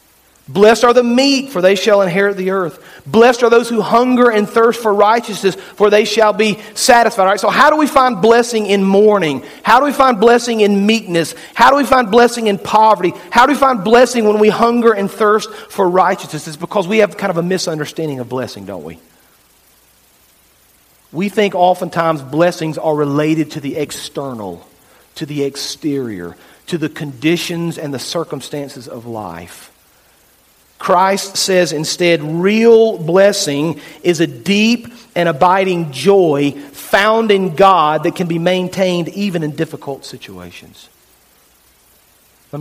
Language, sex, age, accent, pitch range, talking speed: English, male, 40-59, American, 150-215 Hz, 160 wpm